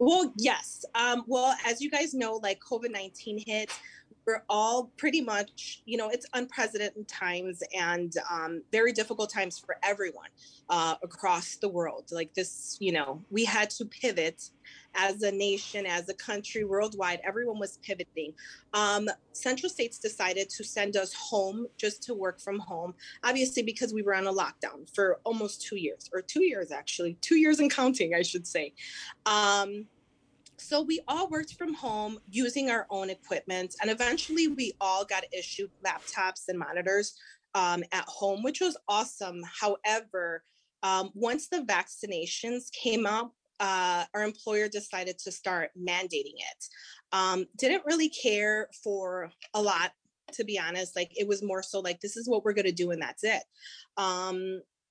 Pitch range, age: 185-235 Hz, 30-49